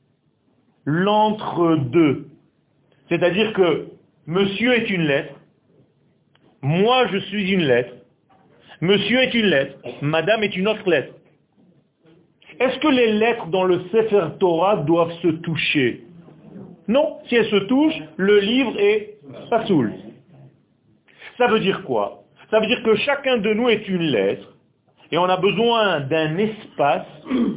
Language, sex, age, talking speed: French, male, 40-59, 135 wpm